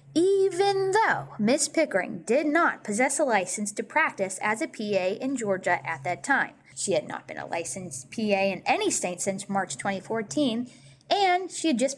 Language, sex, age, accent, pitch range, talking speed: English, female, 20-39, American, 195-285 Hz, 180 wpm